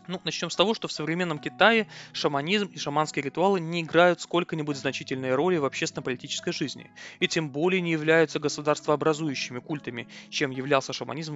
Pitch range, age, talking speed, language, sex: 140-170 Hz, 20-39, 160 wpm, Russian, male